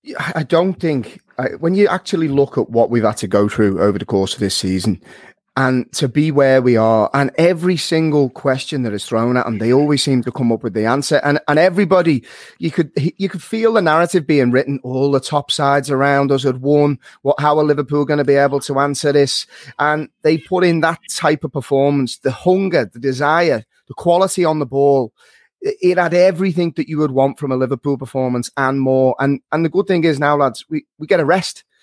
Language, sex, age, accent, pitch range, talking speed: English, male, 30-49, British, 130-165 Hz, 220 wpm